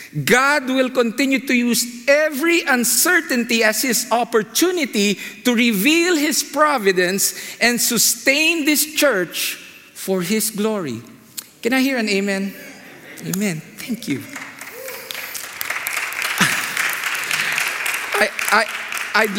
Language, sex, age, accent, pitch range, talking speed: English, male, 50-69, Filipino, 140-220 Hz, 95 wpm